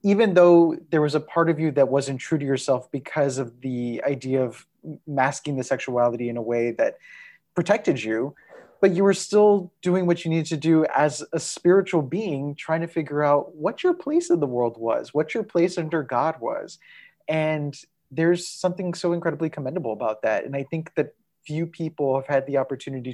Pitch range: 130-175 Hz